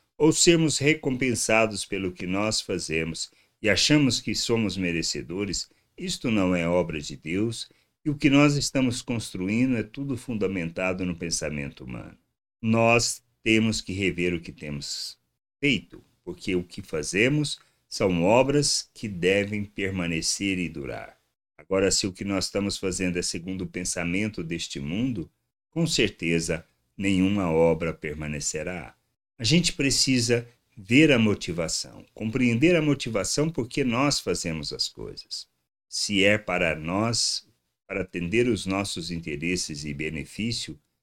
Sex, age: male, 60-79